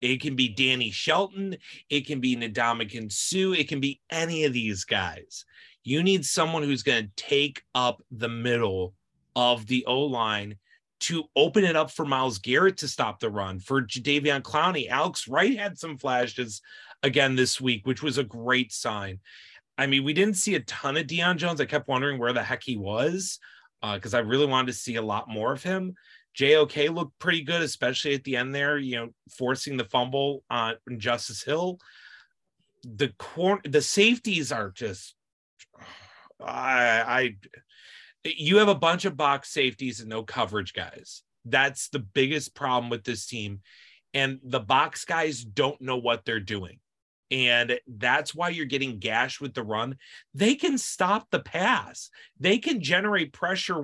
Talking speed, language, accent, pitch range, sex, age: 175 wpm, English, American, 120-155 Hz, male, 30-49